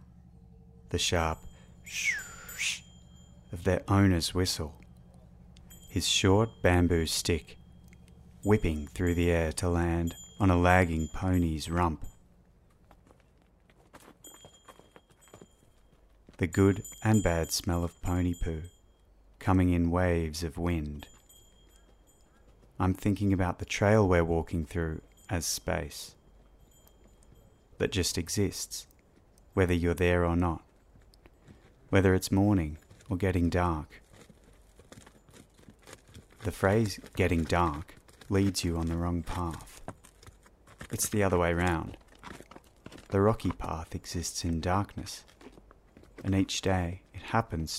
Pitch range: 80-95 Hz